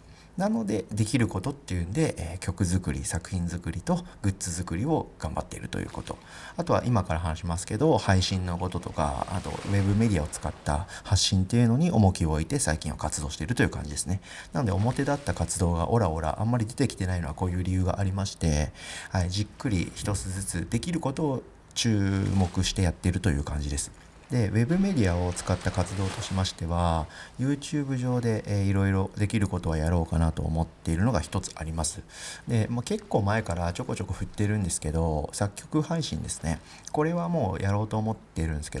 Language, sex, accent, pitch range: Japanese, male, native, 85-110 Hz